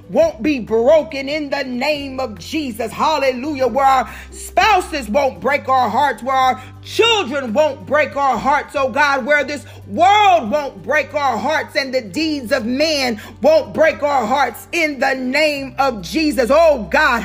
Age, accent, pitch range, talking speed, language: 40-59, American, 265-310 Hz, 165 wpm, English